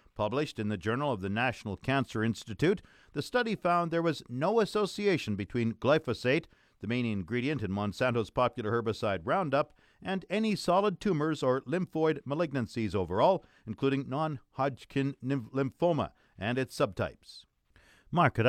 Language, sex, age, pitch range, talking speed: English, male, 50-69, 110-150 Hz, 135 wpm